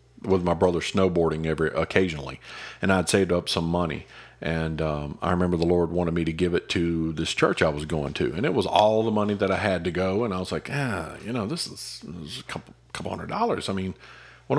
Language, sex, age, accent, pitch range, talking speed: English, male, 40-59, American, 90-125 Hz, 245 wpm